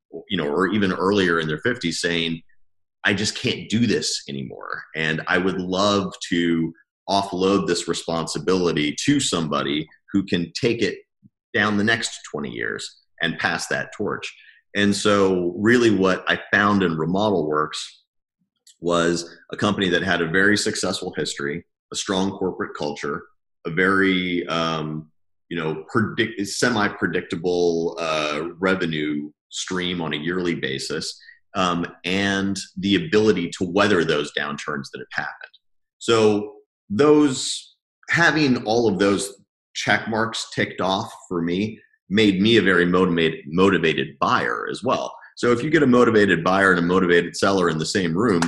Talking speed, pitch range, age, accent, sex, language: 150 wpm, 85-105 Hz, 30-49, American, male, English